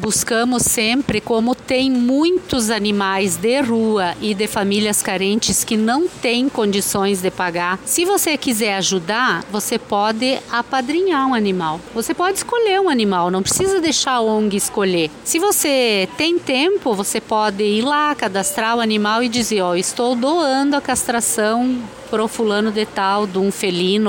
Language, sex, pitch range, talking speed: Portuguese, female, 200-260 Hz, 155 wpm